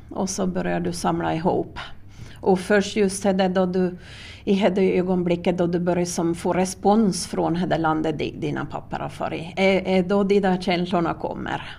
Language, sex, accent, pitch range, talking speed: Swedish, female, native, 175-200 Hz, 165 wpm